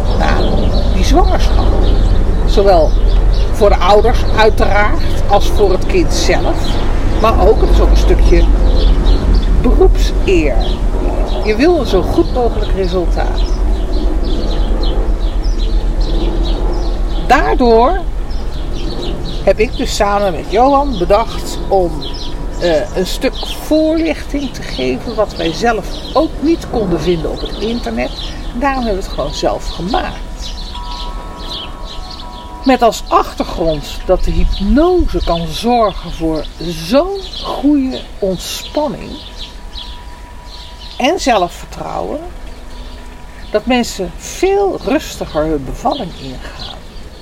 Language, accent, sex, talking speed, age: Dutch, Dutch, female, 105 wpm, 50-69